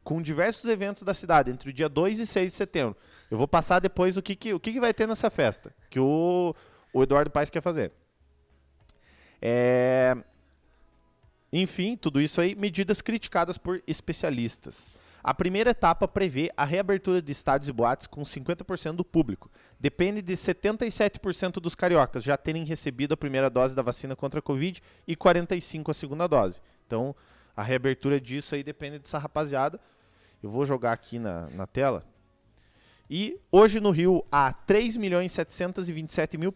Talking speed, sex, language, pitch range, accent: 160 wpm, male, Portuguese, 135-185 Hz, Brazilian